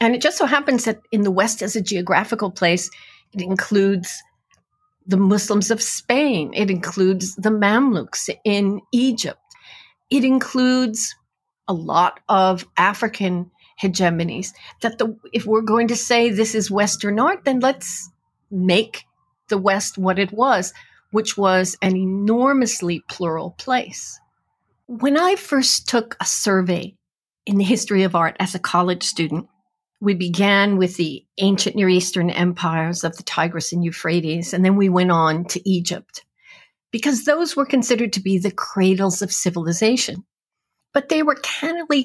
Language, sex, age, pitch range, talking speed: English, female, 40-59, 185-245 Hz, 150 wpm